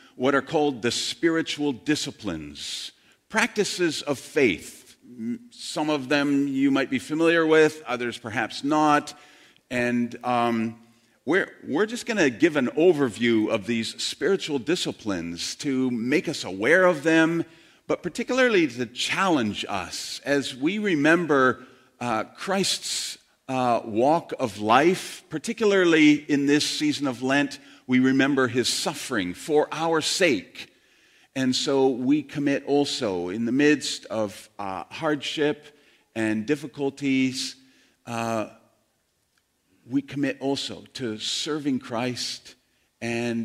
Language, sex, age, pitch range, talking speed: English, male, 50-69, 120-155 Hz, 120 wpm